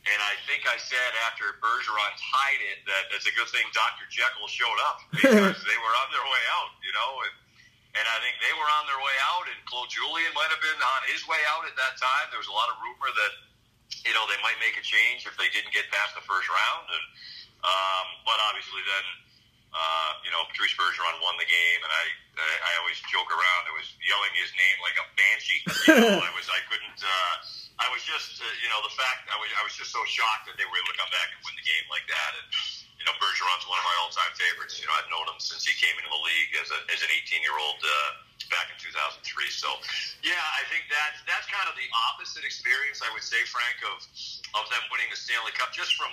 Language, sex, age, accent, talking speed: English, male, 40-59, American, 245 wpm